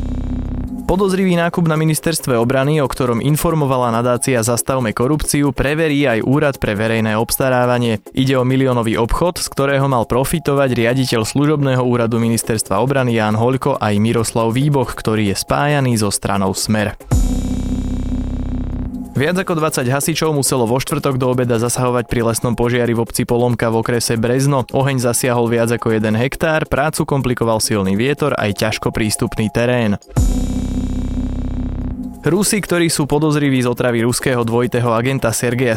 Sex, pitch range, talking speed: male, 110-140 Hz, 145 wpm